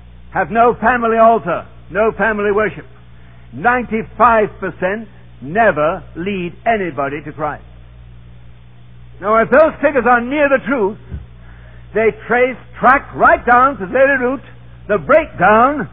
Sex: male